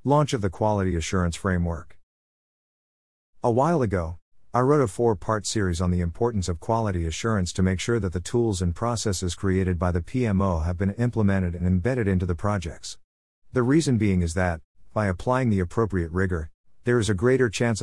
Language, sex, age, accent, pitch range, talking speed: English, male, 50-69, American, 90-110 Hz, 185 wpm